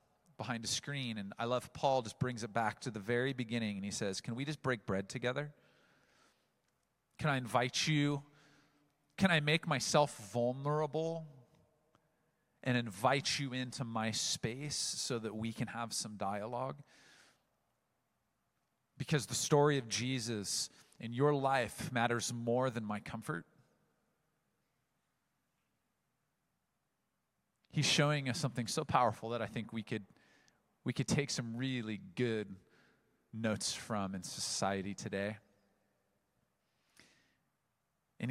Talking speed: 130 wpm